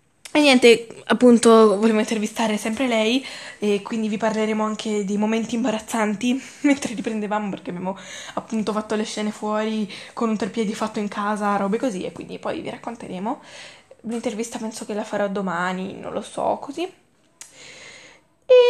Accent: native